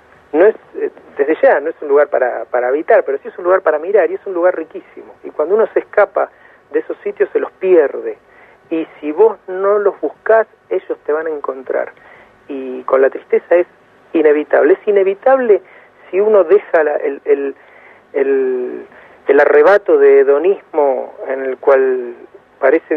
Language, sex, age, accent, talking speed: Spanish, male, 40-59, Argentinian, 180 wpm